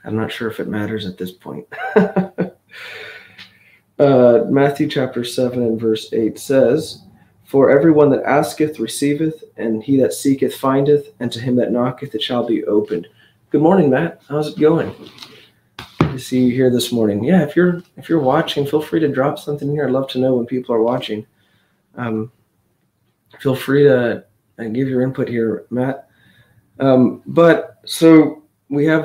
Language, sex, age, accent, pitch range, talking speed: English, male, 20-39, American, 110-145 Hz, 170 wpm